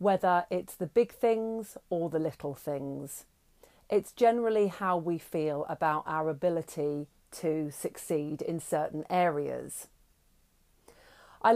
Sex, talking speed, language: female, 120 wpm, English